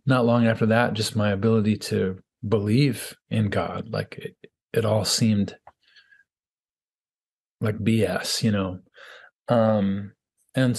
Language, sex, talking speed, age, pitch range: English, male, 120 wpm, 30-49, 105-125 Hz